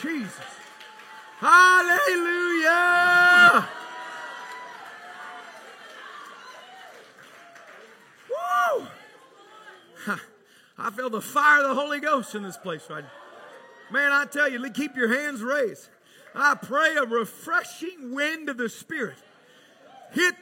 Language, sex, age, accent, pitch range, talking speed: English, male, 40-59, American, 285-350 Hz, 95 wpm